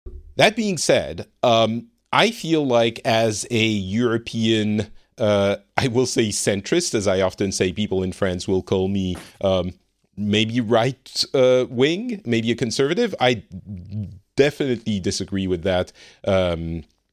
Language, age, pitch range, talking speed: English, 40-59, 100-125 Hz, 135 wpm